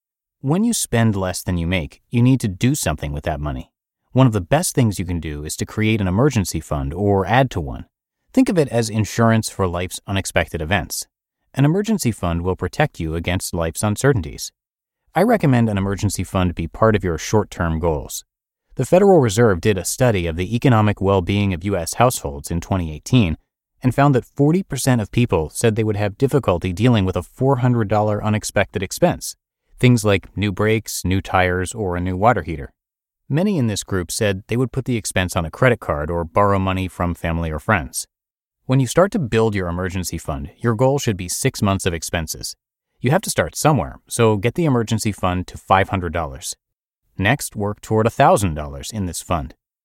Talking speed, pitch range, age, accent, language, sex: 195 wpm, 90-120 Hz, 30-49, American, English, male